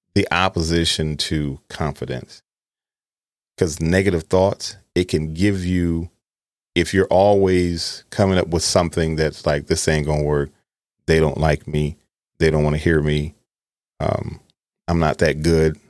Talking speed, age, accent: 150 wpm, 40-59, American